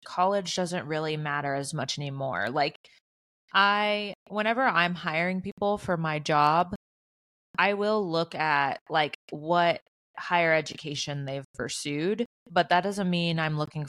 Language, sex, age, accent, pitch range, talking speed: English, female, 20-39, American, 145-180 Hz, 140 wpm